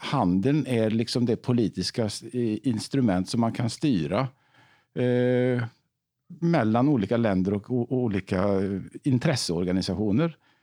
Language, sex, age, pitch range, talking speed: English, male, 50-69, 105-125 Hz, 100 wpm